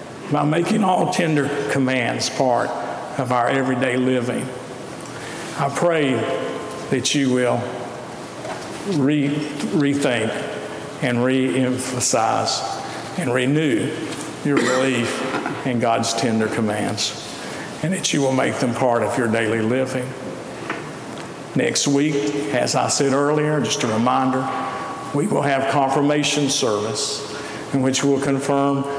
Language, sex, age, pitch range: English, male, 50-69, 120-145 Hz